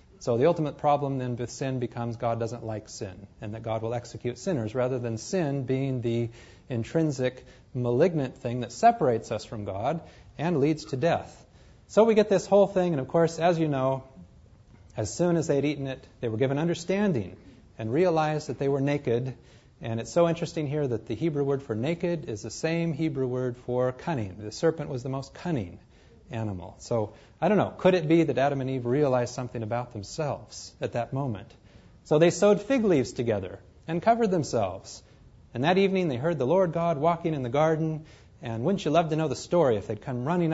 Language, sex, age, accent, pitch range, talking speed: English, male, 30-49, American, 115-165 Hz, 205 wpm